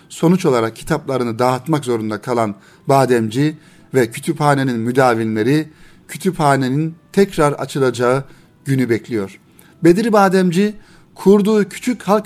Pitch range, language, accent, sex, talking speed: 125-165 Hz, Turkish, native, male, 100 wpm